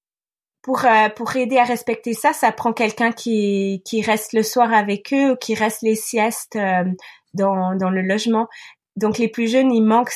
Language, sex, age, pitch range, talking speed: French, female, 20-39, 195-235 Hz, 195 wpm